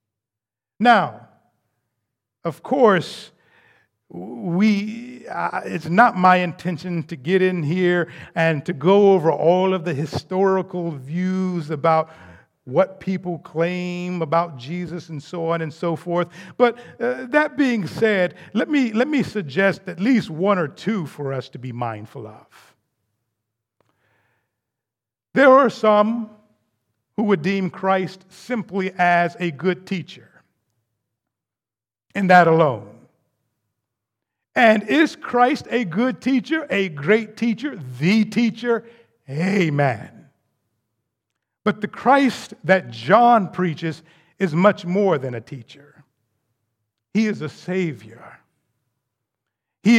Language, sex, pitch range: English, male, 130-205 Hz